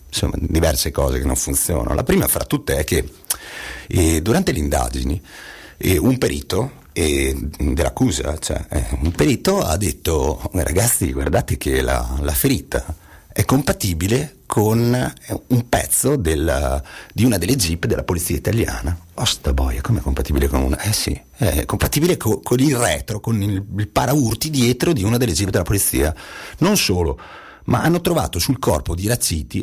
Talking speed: 160 wpm